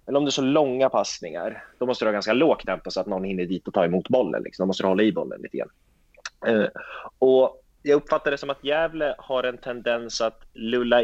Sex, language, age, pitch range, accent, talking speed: male, Swedish, 30-49, 110-155 Hz, native, 230 wpm